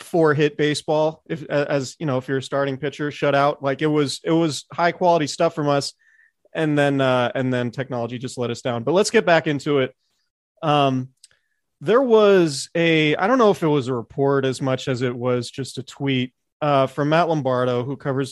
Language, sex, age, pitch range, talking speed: English, male, 30-49, 130-170 Hz, 215 wpm